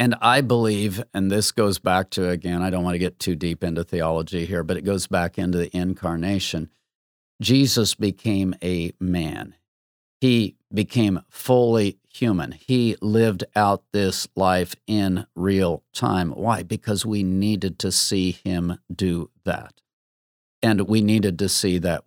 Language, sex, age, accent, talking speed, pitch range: English, male, 50-69, American, 155 wpm, 90-110 Hz